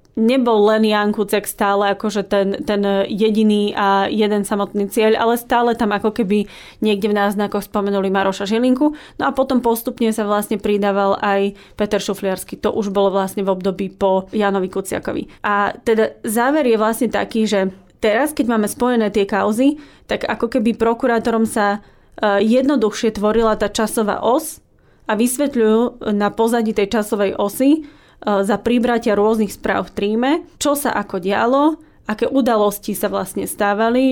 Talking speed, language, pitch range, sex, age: 155 wpm, Slovak, 200-225 Hz, female, 20-39